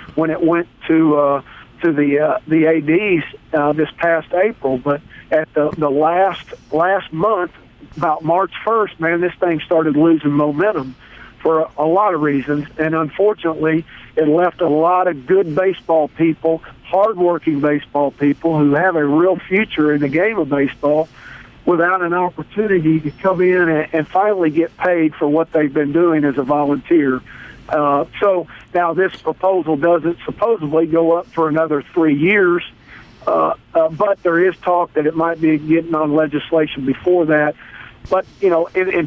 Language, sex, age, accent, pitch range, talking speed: English, male, 50-69, American, 150-170 Hz, 170 wpm